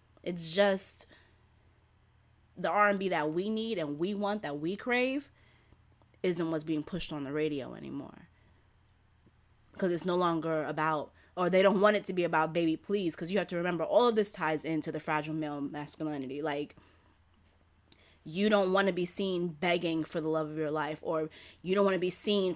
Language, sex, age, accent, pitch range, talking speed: English, female, 20-39, American, 150-200 Hz, 190 wpm